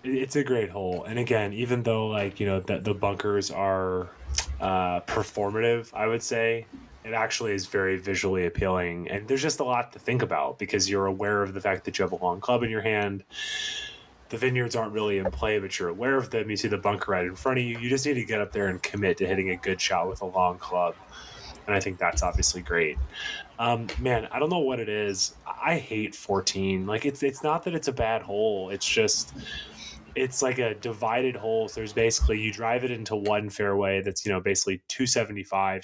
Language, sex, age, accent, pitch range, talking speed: English, male, 20-39, American, 95-115 Hz, 225 wpm